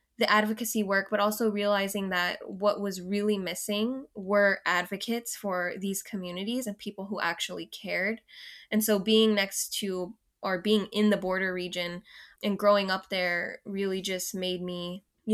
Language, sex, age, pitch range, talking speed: English, female, 10-29, 185-215 Hz, 160 wpm